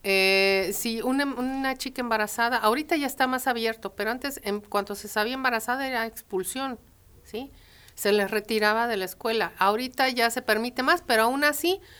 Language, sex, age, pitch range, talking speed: Spanish, female, 40-59, 195-235 Hz, 175 wpm